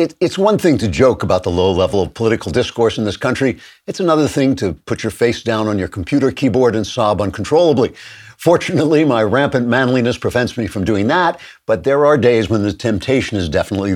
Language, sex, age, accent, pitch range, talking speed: English, male, 60-79, American, 105-130 Hz, 205 wpm